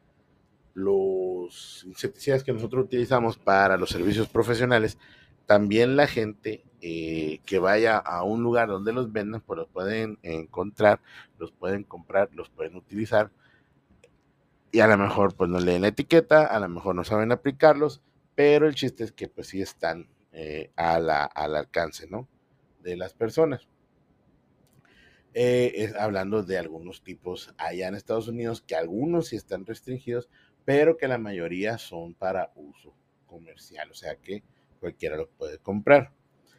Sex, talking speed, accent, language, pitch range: male, 155 wpm, Mexican, Spanish, 95-125 Hz